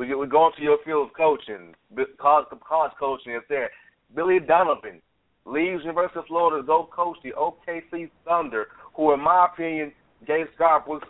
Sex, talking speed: male, 155 wpm